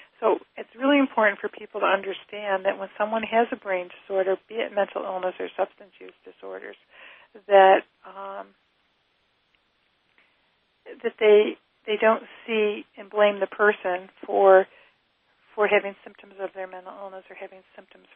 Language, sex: English, female